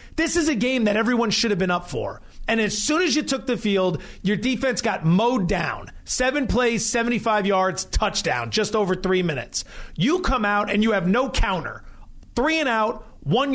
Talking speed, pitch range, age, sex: 200 wpm, 200-255 Hz, 40-59, male